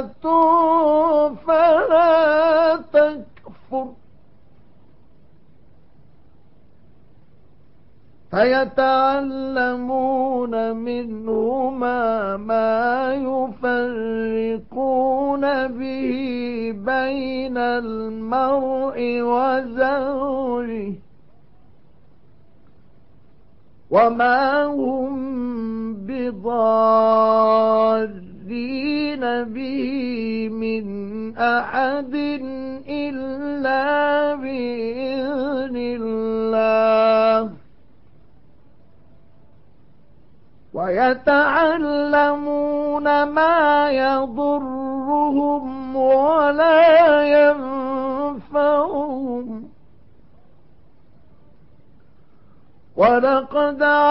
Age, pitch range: 50-69, 240-290 Hz